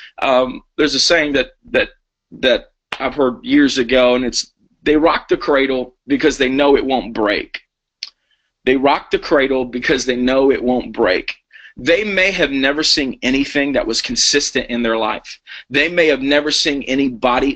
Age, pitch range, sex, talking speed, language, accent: 30-49, 135-165 Hz, male, 175 wpm, English, American